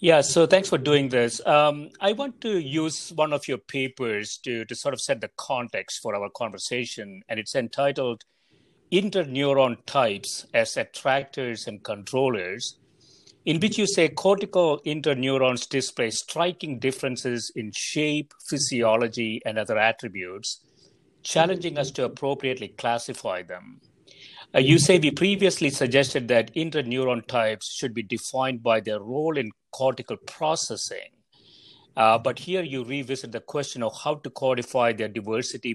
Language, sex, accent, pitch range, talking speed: English, male, Indian, 115-150 Hz, 145 wpm